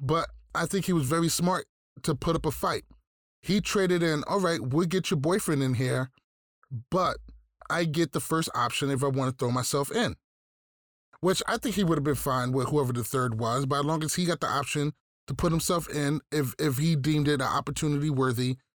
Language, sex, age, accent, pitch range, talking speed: English, male, 20-39, American, 135-175 Hz, 220 wpm